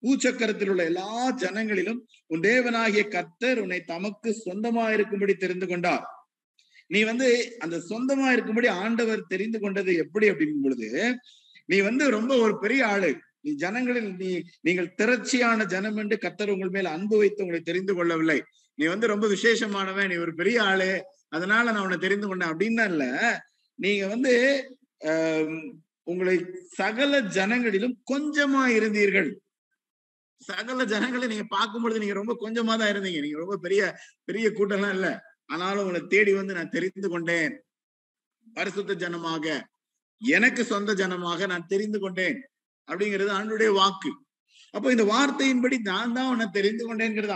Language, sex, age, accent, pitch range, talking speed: Tamil, male, 50-69, native, 190-245 Hz, 135 wpm